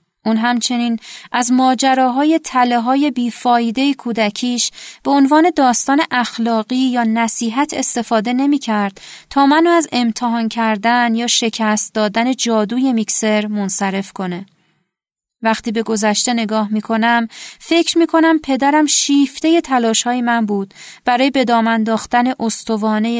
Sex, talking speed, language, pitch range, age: female, 115 wpm, Persian, 220-275 Hz, 30-49